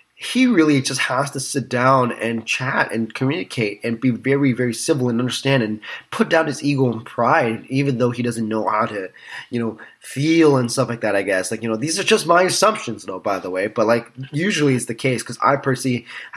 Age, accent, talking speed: 20-39, American, 225 wpm